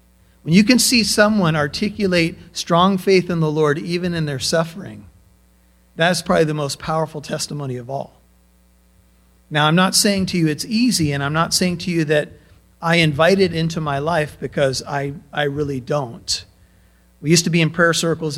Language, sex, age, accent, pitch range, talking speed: English, male, 40-59, American, 150-215 Hz, 180 wpm